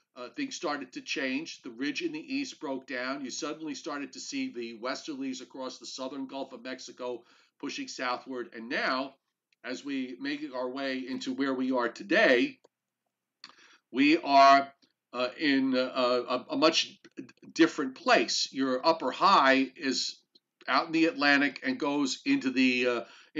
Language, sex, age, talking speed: English, male, 50-69, 160 wpm